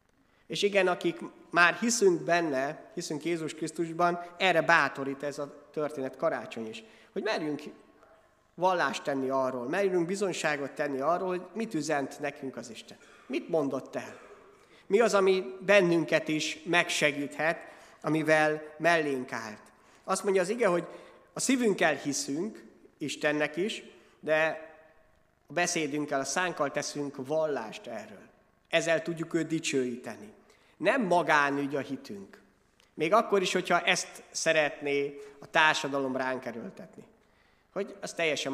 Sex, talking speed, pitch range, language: male, 125 wpm, 140-180 Hz, Hungarian